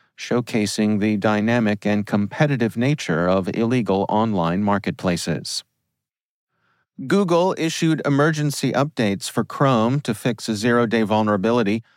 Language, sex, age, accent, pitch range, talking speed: English, male, 40-59, American, 100-125 Hz, 105 wpm